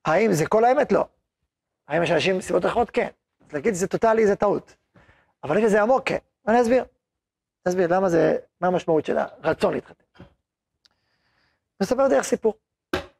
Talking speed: 170 wpm